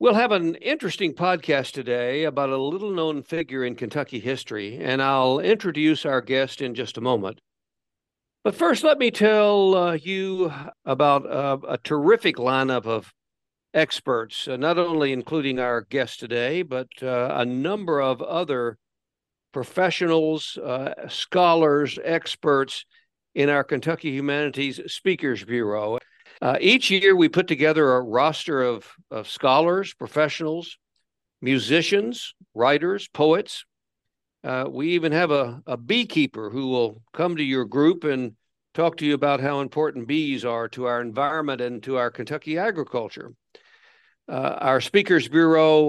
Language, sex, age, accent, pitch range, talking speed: English, male, 60-79, American, 130-165 Hz, 140 wpm